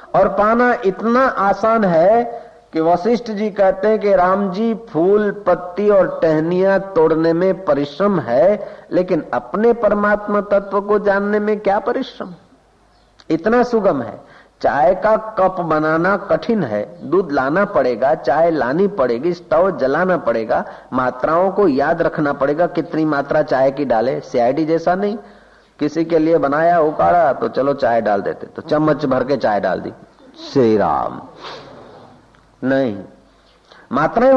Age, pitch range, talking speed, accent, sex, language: 50-69, 160-215 Hz, 140 wpm, native, male, Hindi